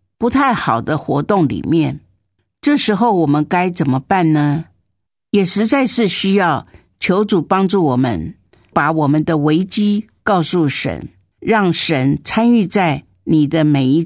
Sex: female